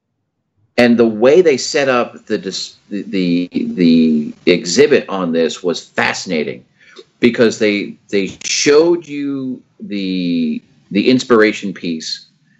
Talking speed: 115 wpm